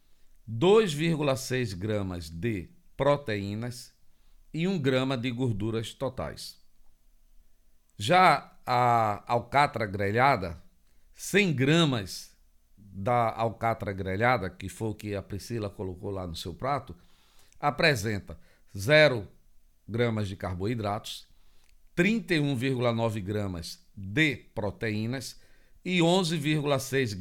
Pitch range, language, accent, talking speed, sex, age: 100-140 Hz, Portuguese, Brazilian, 90 wpm, male, 50-69